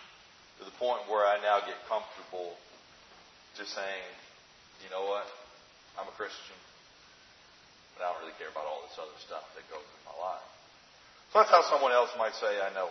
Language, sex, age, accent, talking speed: English, male, 40-59, American, 185 wpm